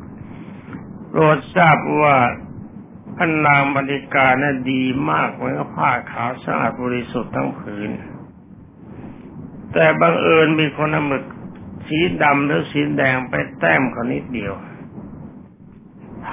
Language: Thai